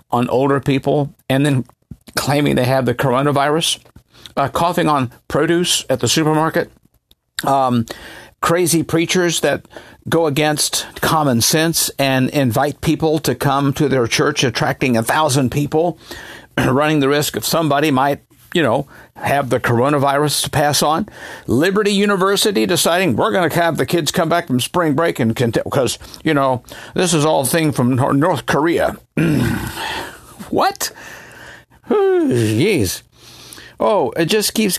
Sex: male